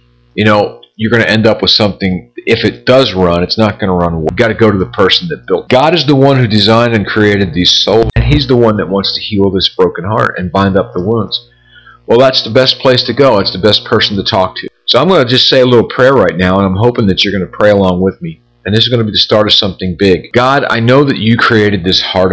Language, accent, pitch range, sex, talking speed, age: English, American, 90-120 Hz, male, 275 wpm, 40-59